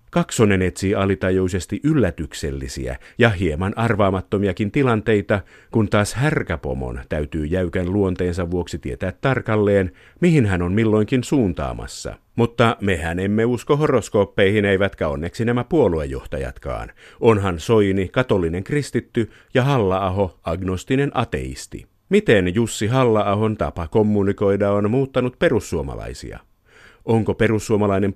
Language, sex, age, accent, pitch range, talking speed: Finnish, male, 50-69, native, 90-120 Hz, 105 wpm